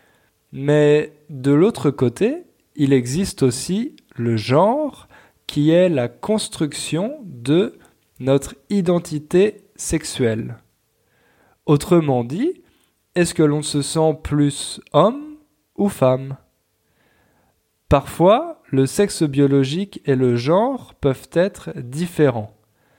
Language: English